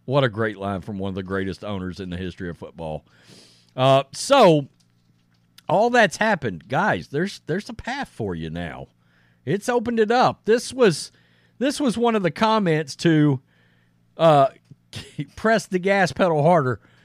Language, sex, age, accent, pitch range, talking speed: English, male, 40-59, American, 110-180 Hz, 165 wpm